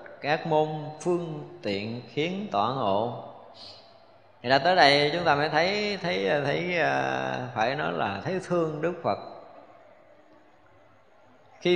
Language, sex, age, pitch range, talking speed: Vietnamese, male, 20-39, 120-175 Hz, 130 wpm